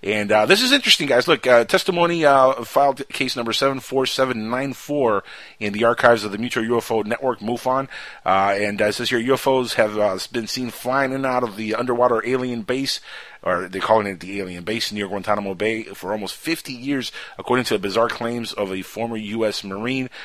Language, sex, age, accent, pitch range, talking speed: English, male, 30-49, American, 105-130 Hz, 210 wpm